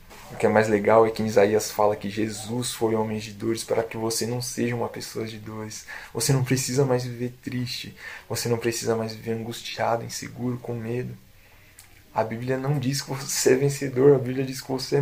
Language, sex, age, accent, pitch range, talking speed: Portuguese, male, 20-39, Brazilian, 115-140 Hz, 210 wpm